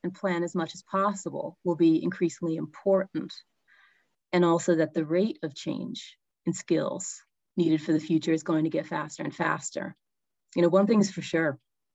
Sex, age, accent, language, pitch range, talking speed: female, 30-49, American, English, 160-185 Hz, 185 wpm